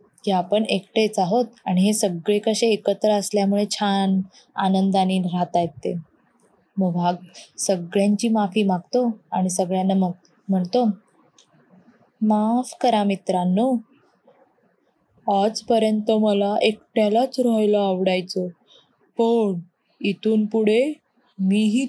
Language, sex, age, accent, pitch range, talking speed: Marathi, female, 20-39, native, 200-245 Hz, 100 wpm